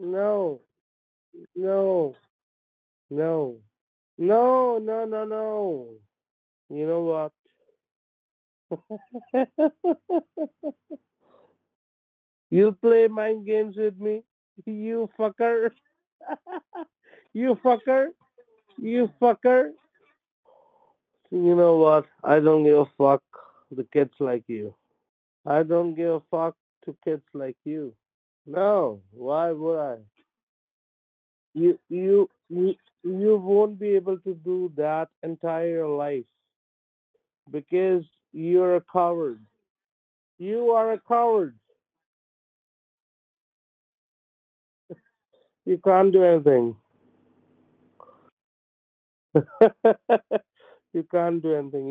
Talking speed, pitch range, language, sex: 85 wpm, 155-255 Hz, English, male